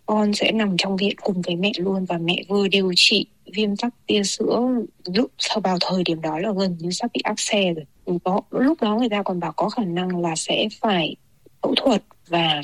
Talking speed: 220 wpm